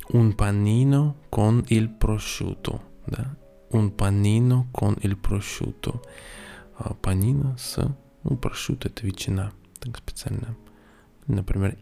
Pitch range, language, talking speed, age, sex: 100-125 Hz, Russian, 110 wpm, 20-39, male